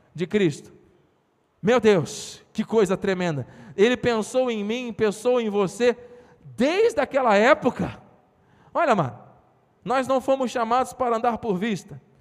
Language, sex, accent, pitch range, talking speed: Portuguese, male, Brazilian, 210-260 Hz, 135 wpm